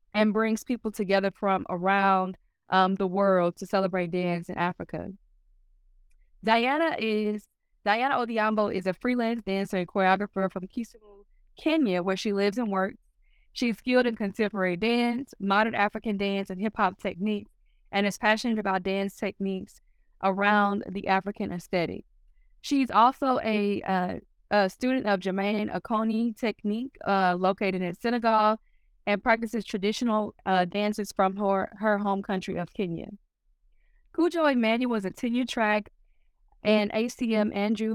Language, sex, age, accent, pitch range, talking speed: English, female, 20-39, American, 190-220 Hz, 140 wpm